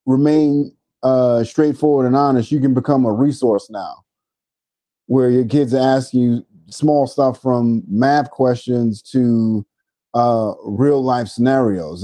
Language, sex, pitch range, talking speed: English, male, 115-145 Hz, 130 wpm